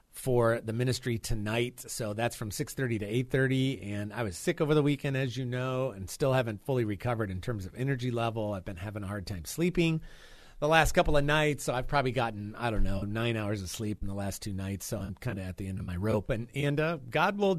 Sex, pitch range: male, 110-150 Hz